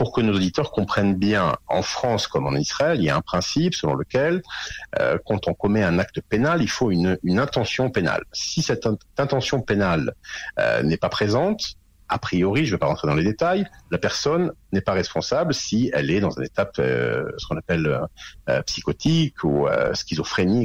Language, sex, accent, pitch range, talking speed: French, male, French, 95-135 Hz, 200 wpm